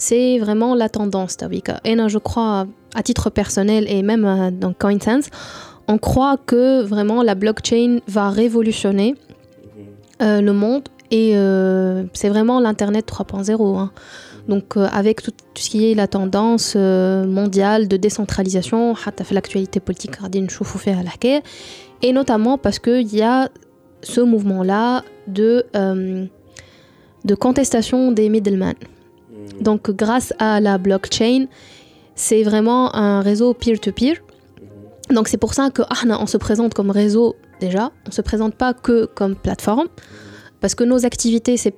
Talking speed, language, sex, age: 130 wpm, Arabic, female, 20-39